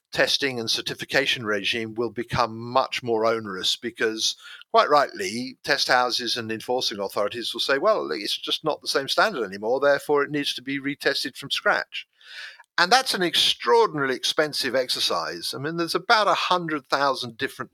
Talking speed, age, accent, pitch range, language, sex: 165 wpm, 50-69, British, 120-170 Hz, English, male